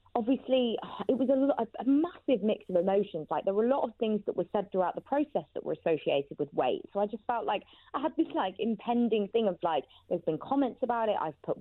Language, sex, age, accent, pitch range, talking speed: English, female, 20-39, British, 175-245 Hz, 245 wpm